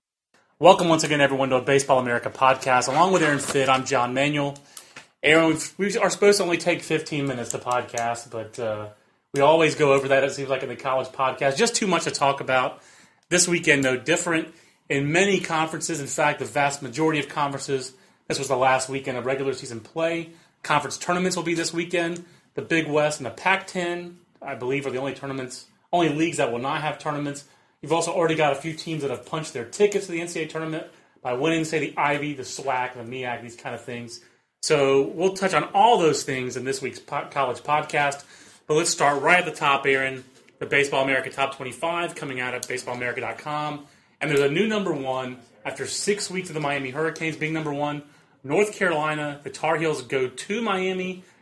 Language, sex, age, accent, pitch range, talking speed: English, male, 30-49, American, 135-165 Hz, 205 wpm